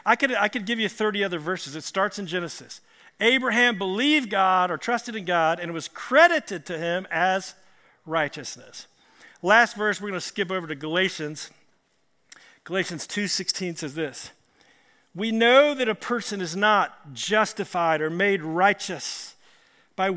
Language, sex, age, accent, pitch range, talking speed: English, male, 50-69, American, 185-245 Hz, 150 wpm